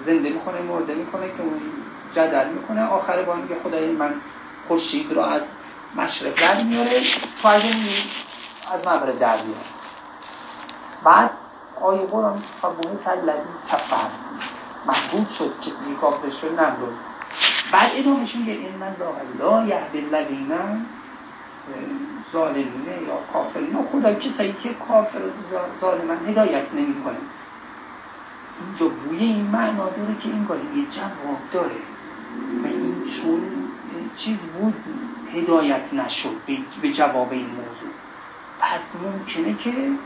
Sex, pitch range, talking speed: male, 185-290 Hz, 125 wpm